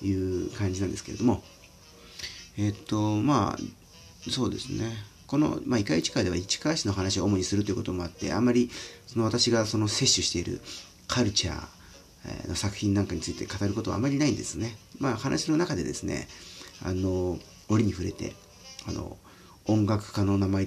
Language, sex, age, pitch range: Japanese, male, 40-59, 90-105 Hz